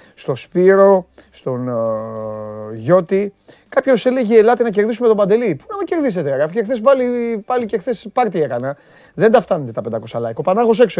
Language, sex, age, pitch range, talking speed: Greek, male, 30-49, 135-205 Hz, 185 wpm